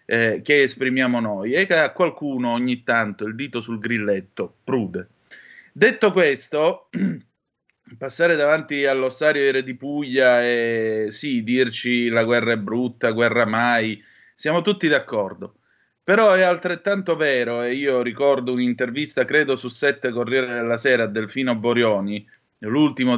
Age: 30-49